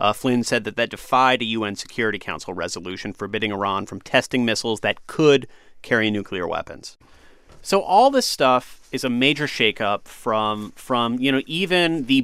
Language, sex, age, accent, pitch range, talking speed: English, male, 30-49, American, 115-150 Hz, 170 wpm